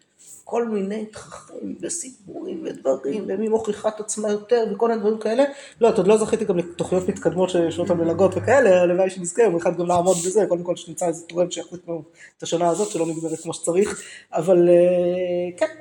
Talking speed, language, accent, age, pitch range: 180 wpm, Hebrew, native, 20-39, 165-210 Hz